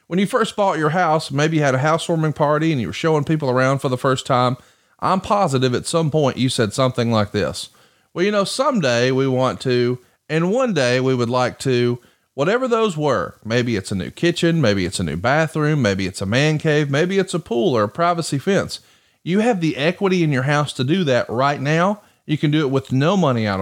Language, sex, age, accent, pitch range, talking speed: English, male, 30-49, American, 125-175 Hz, 235 wpm